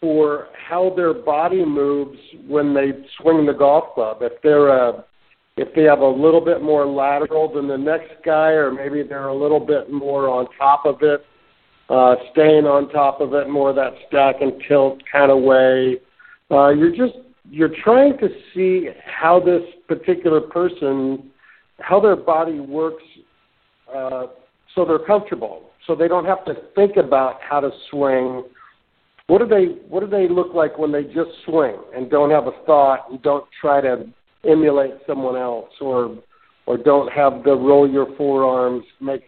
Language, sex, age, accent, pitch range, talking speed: English, male, 50-69, American, 135-165 Hz, 175 wpm